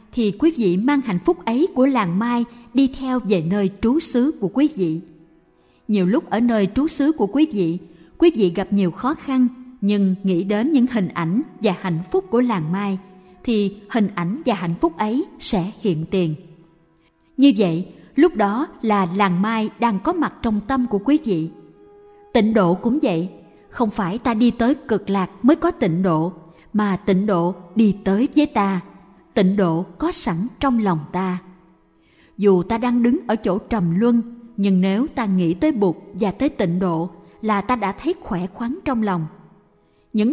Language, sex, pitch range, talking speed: Vietnamese, female, 185-255 Hz, 190 wpm